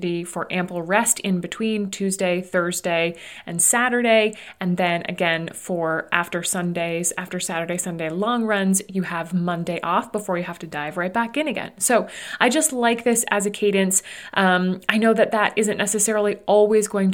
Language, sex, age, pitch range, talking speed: English, female, 30-49, 180-220 Hz, 175 wpm